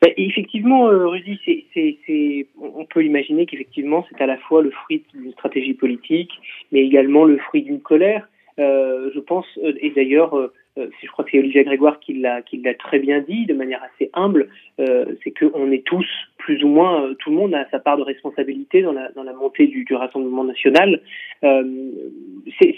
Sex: male